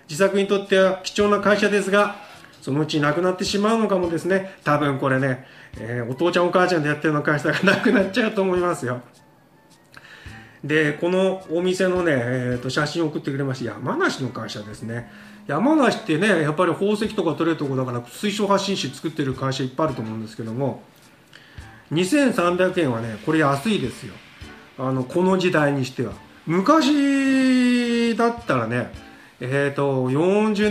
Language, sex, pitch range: Japanese, male, 125-195 Hz